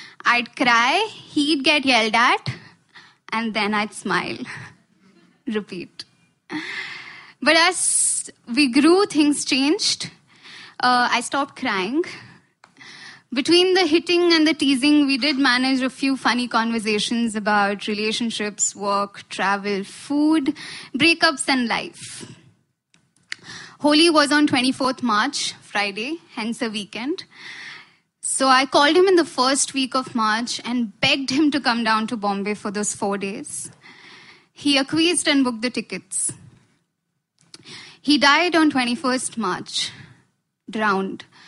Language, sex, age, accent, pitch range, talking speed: Hindi, female, 10-29, native, 215-290 Hz, 125 wpm